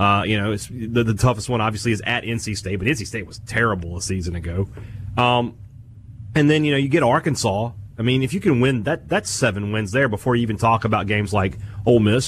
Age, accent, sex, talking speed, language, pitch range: 30-49, American, male, 240 wpm, English, 100-125 Hz